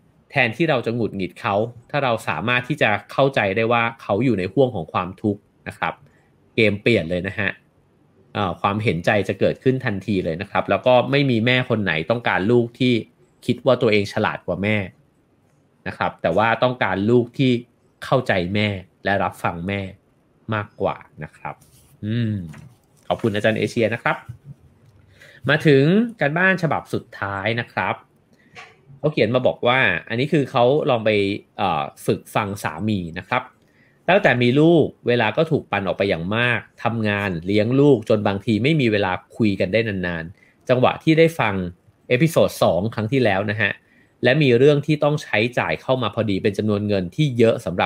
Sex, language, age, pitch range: male, English, 20-39, 100-130 Hz